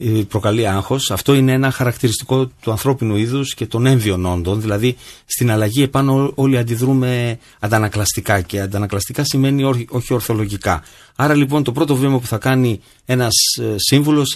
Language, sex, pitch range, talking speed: Greek, male, 105-140 Hz, 145 wpm